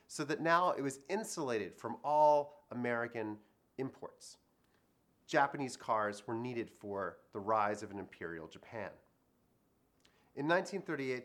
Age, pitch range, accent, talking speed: 30-49, 120-155 Hz, American, 125 wpm